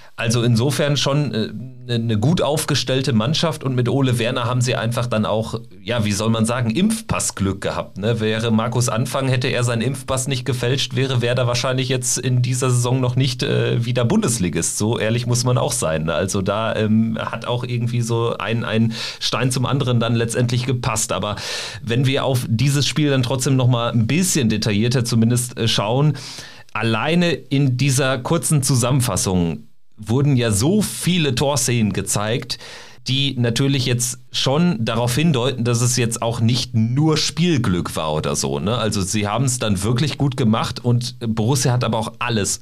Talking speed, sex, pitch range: 175 wpm, male, 110-130 Hz